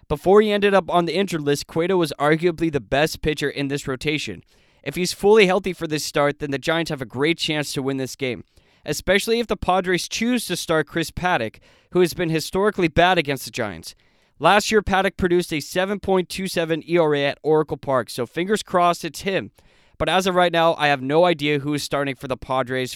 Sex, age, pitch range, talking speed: male, 20-39, 150-185 Hz, 215 wpm